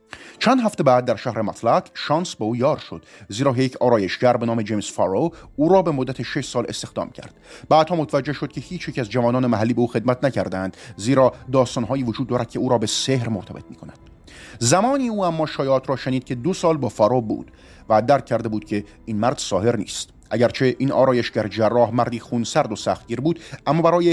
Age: 30-49